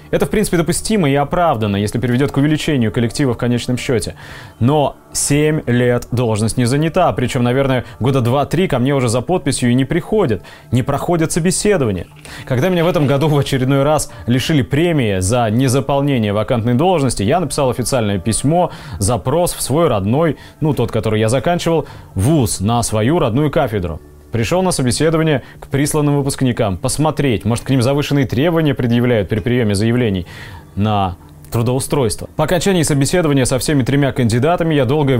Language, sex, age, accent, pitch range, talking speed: Russian, male, 20-39, native, 115-155 Hz, 160 wpm